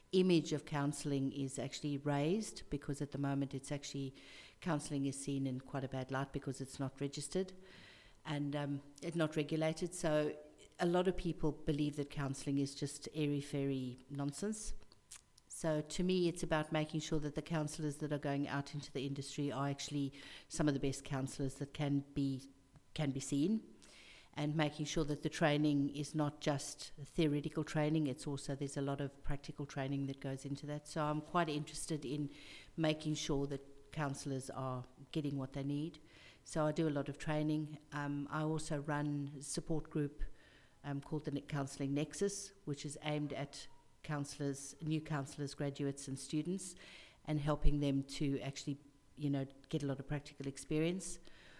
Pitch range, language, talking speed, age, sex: 140-155 Hz, English, 175 wpm, 50-69, female